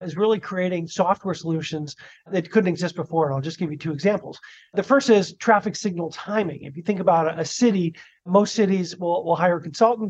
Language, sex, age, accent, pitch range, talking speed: English, male, 40-59, American, 165-205 Hz, 210 wpm